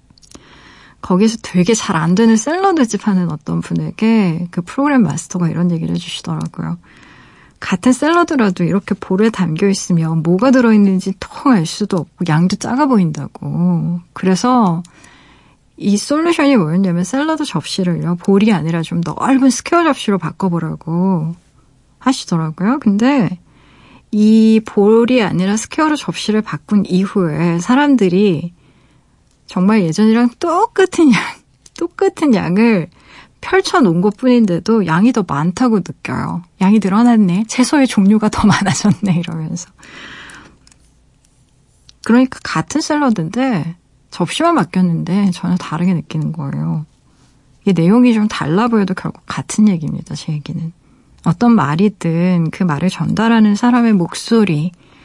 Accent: native